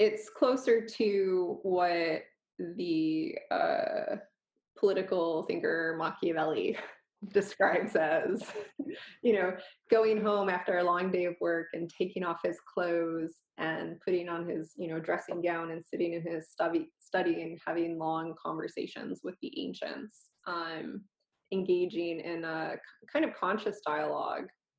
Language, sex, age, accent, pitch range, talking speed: English, female, 20-39, American, 170-260 Hz, 135 wpm